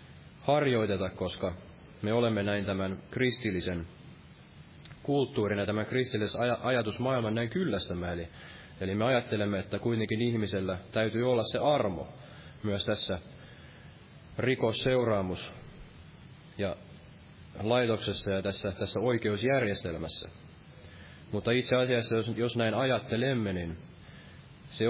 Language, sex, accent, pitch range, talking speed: Finnish, male, native, 95-120 Hz, 100 wpm